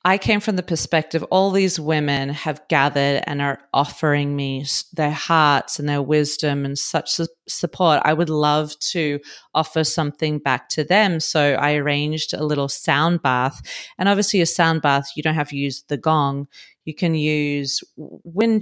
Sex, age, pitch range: female, 30-49, 145-170 Hz